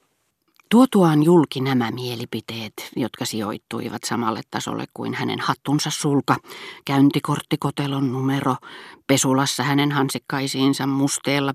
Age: 40-59